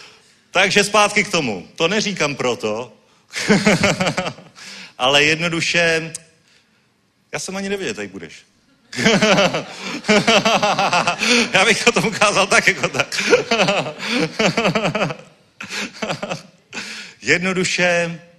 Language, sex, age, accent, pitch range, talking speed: Czech, male, 40-59, native, 125-170 Hz, 75 wpm